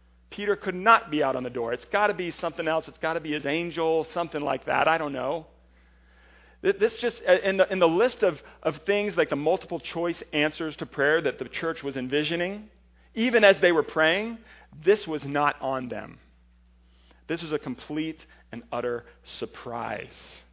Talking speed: 185 wpm